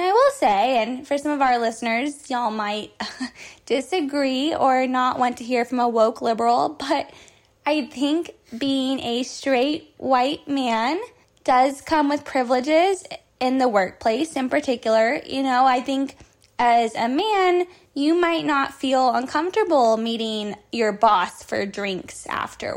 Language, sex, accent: English, female, American